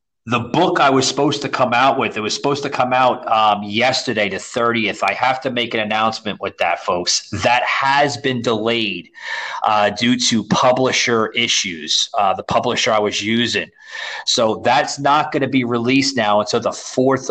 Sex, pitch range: male, 110-130 Hz